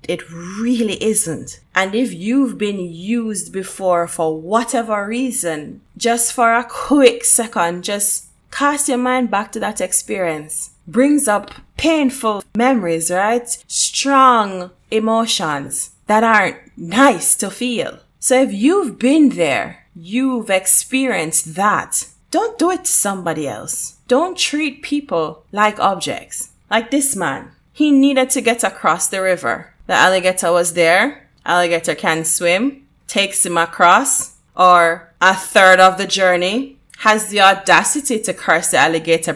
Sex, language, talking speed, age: female, English, 135 wpm, 20-39